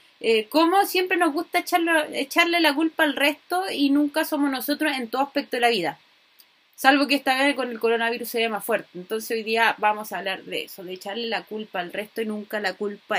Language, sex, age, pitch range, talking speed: Spanish, female, 20-39, 220-285 Hz, 225 wpm